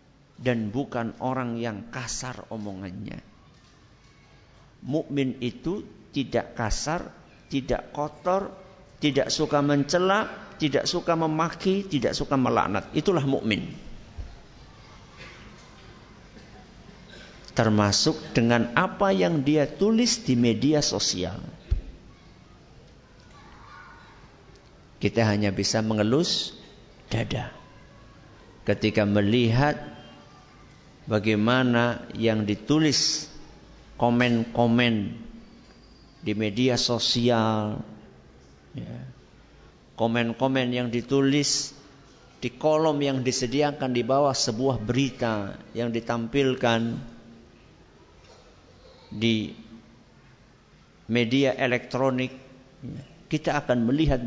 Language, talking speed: Malay, 70 wpm